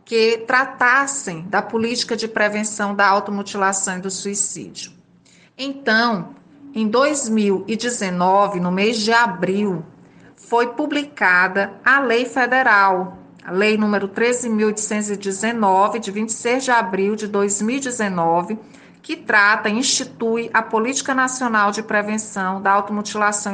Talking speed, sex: 110 wpm, female